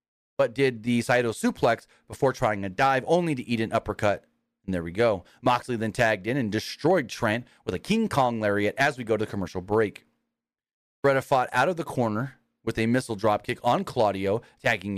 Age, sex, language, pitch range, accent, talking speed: 30-49, male, English, 110-135 Hz, American, 200 wpm